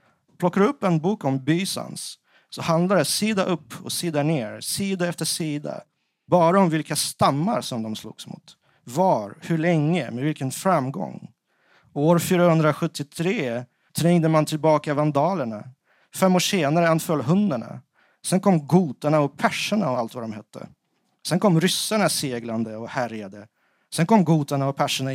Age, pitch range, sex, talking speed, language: 40-59, 125-175 Hz, male, 150 wpm, Swedish